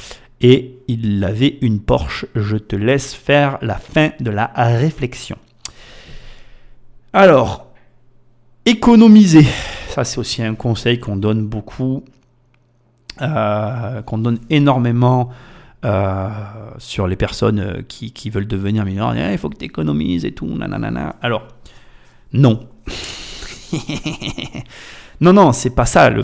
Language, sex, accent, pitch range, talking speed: French, male, French, 110-135 Hz, 125 wpm